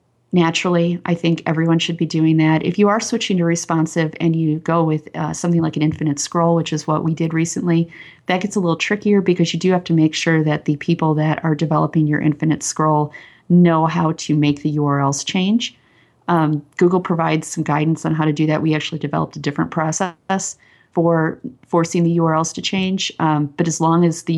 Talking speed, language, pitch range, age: 210 wpm, English, 145-165 Hz, 30-49